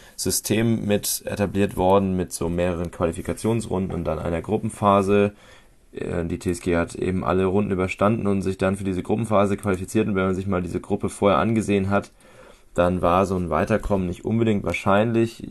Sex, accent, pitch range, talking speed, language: male, German, 90-100 Hz, 170 wpm, German